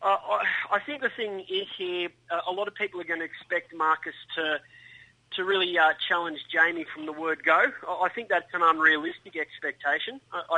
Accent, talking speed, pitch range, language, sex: Australian, 195 wpm, 165-195 Hz, English, male